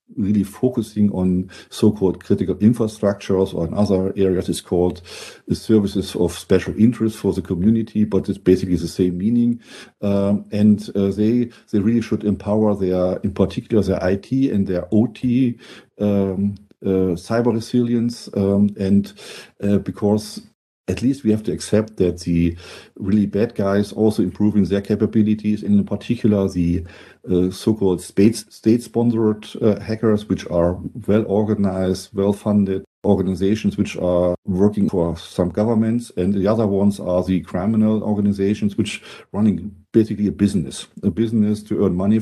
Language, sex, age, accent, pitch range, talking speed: English, male, 50-69, German, 95-110 Hz, 150 wpm